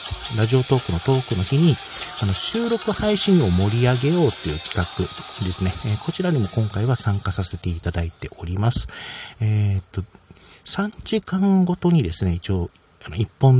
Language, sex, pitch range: Japanese, male, 95-125 Hz